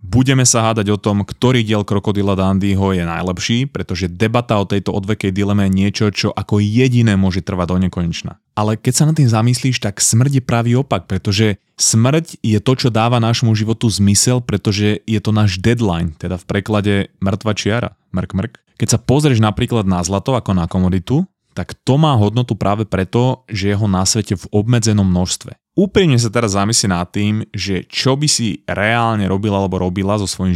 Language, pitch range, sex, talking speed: Slovak, 95-115 Hz, male, 190 wpm